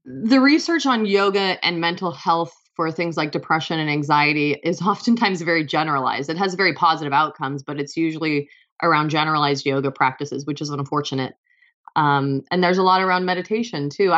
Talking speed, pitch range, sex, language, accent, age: 170 wpm, 150-185 Hz, female, English, American, 30-49